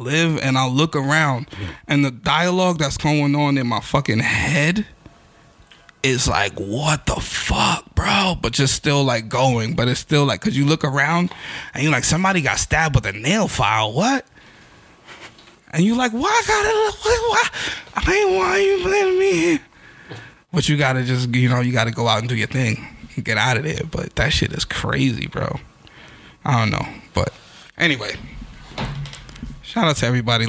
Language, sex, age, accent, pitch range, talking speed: English, male, 20-39, American, 120-155 Hz, 180 wpm